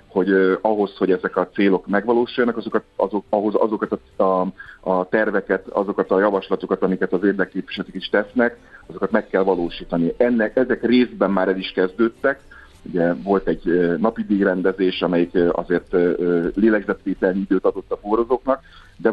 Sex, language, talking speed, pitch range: male, Hungarian, 145 wpm, 95-105 Hz